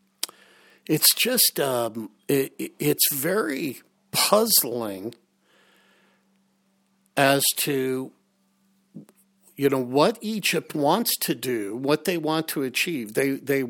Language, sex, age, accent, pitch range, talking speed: English, male, 60-79, American, 130-180 Hz, 100 wpm